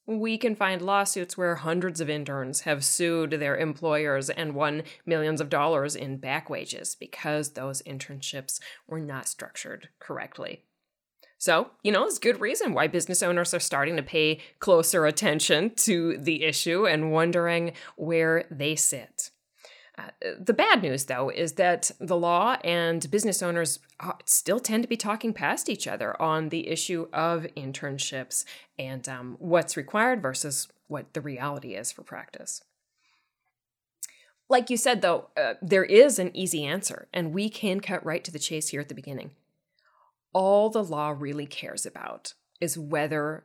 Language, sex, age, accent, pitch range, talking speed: English, female, 20-39, American, 150-190 Hz, 160 wpm